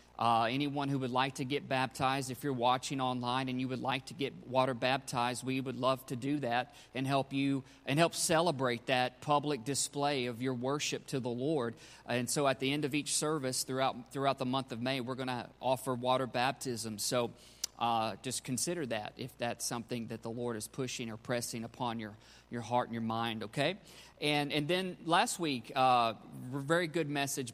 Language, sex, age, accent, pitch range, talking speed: English, male, 40-59, American, 125-140 Hz, 205 wpm